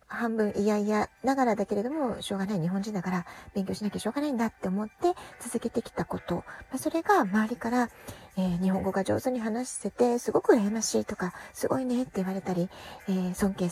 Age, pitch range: 40-59, 195-285 Hz